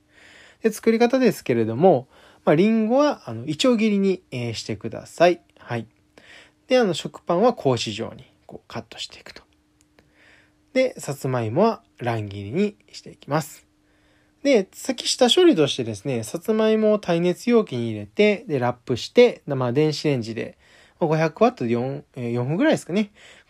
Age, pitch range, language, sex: 20-39, 115-190 Hz, Japanese, male